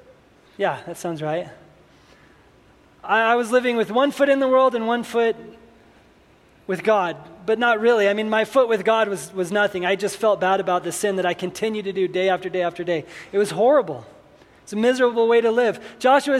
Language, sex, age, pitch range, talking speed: English, male, 20-39, 185-240 Hz, 210 wpm